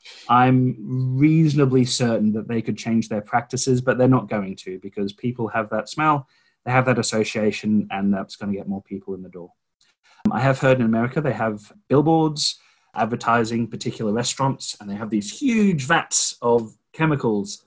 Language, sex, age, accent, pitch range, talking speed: English, male, 30-49, British, 105-135 Hz, 175 wpm